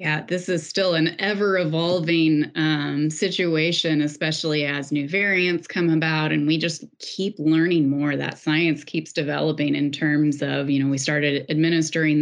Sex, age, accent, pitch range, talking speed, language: female, 30-49, American, 145-170 Hz, 150 wpm, English